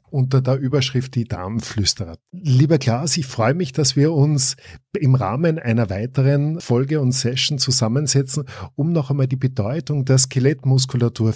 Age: 50-69